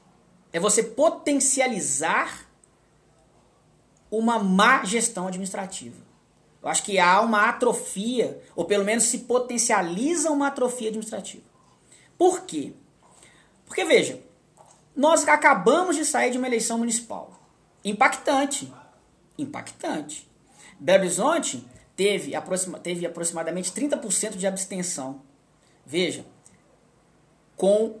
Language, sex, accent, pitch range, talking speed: Portuguese, male, Brazilian, 190-280 Hz, 95 wpm